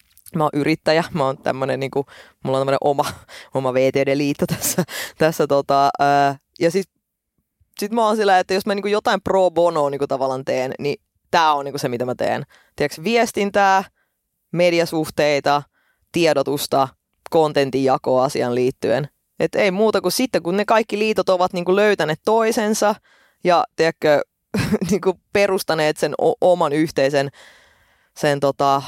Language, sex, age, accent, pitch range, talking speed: Finnish, female, 20-39, native, 140-190 Hz, 150 wpm